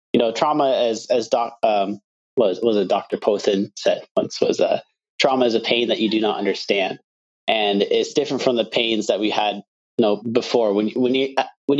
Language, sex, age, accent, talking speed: English, male, 30-49, American, 225 wpm